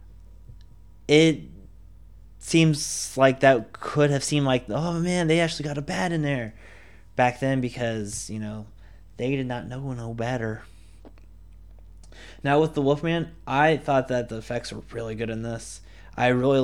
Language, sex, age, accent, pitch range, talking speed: English, male, 20-39, American, 90-135 Hz, 160 wpm